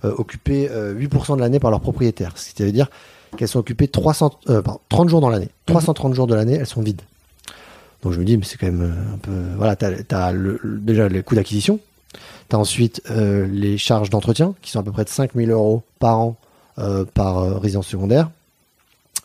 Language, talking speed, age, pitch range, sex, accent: French, 210 wpm, 30-49, 100-130 Hz, male, French